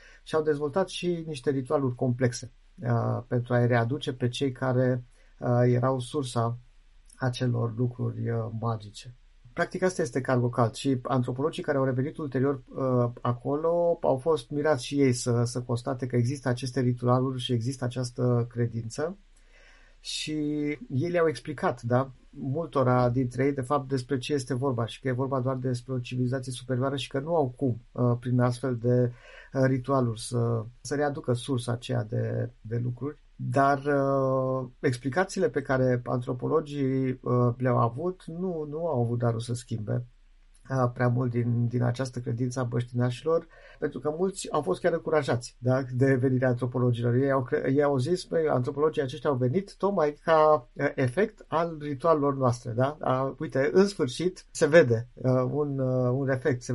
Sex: male